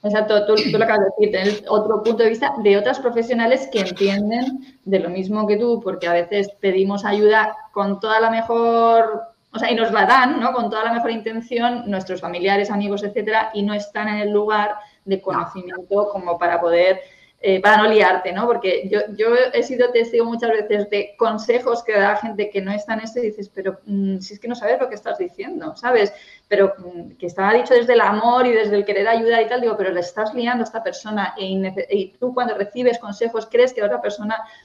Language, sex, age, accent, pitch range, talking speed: Spanish, female, 20-39, Spanish, 195-230 Hz, 220 wpm